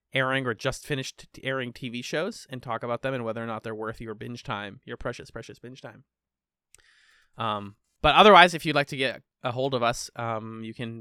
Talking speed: 220 wpm